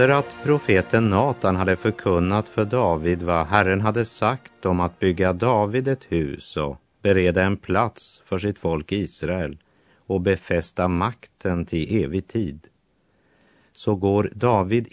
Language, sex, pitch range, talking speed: Swedish, male, 85-105 Hz, 140 wpm